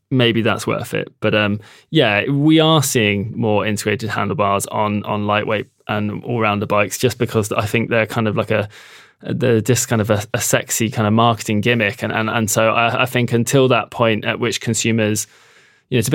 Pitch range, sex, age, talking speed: 105-125 Hz, male, 20-39, 210 wpm